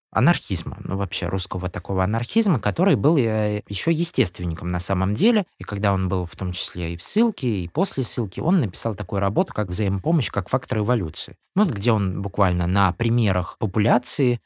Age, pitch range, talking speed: 20-39, 90-120 Hz, 175 wpm